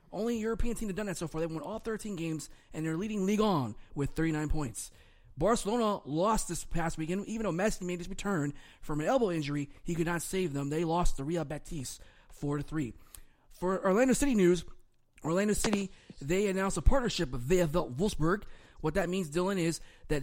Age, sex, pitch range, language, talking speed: 20-39, male, 155-190 Hz, English, 205 wpm